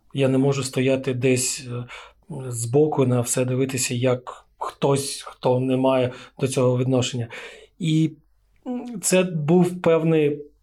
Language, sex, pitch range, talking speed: Ukrainian, male, 135-155 Hz, 120 wpm